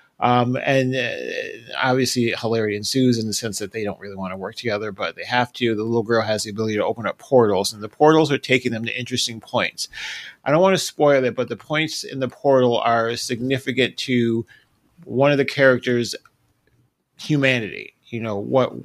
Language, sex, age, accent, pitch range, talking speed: English, male, 30-49, American, 115-135 Hz, 200 wpm